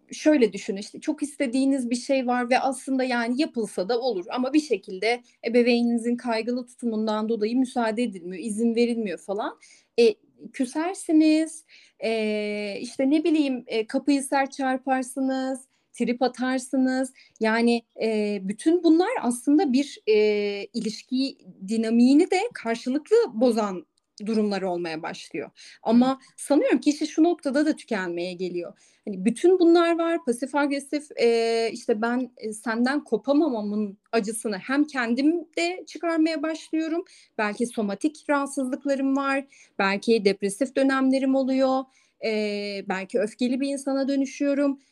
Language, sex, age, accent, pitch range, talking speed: Turkish, female, 30-49, native, 220-285 Hz, 120 wpm